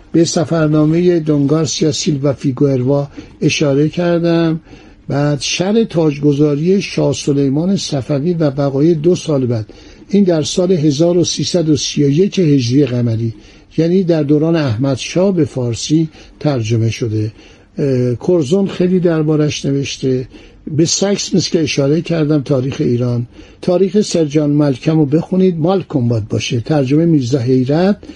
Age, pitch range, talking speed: 60-79, 130-170 Hz, 115 wpm